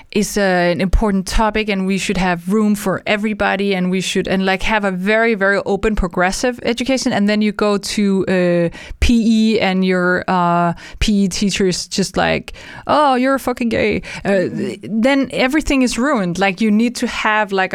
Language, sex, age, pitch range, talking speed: English, female, 20-39, 190-220 Hz, 185 wpm